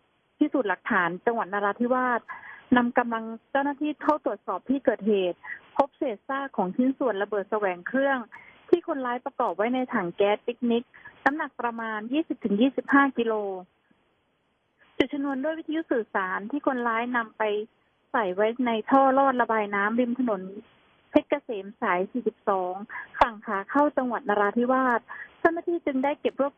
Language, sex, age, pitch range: Thai, female, 20-39, 215-275 Hz